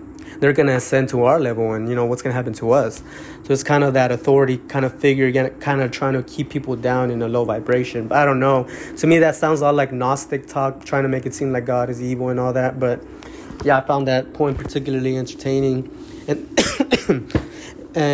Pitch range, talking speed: 130-140 Hz, 230 wpm